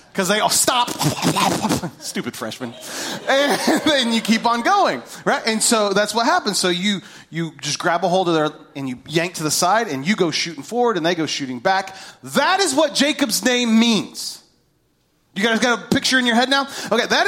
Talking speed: 210 wpm